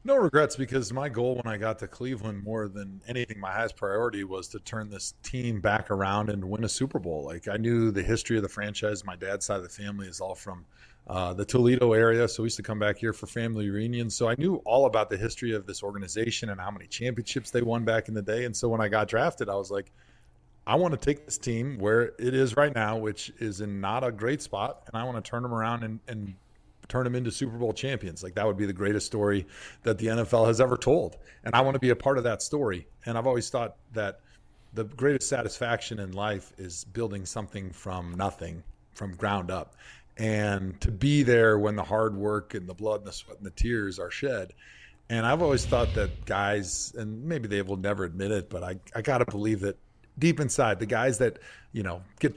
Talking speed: 240 wpm